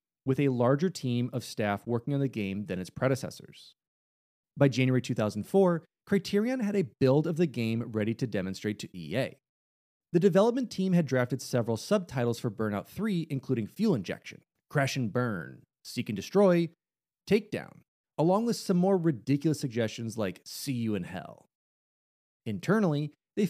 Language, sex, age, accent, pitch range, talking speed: English, male, 30-49, American, 115-170 Hz, 155 wpm